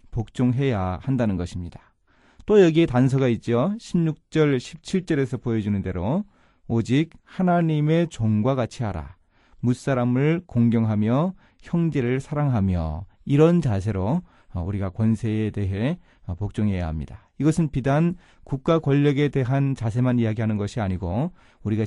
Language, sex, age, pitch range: Korean, male, 30-49, 105-140 Hz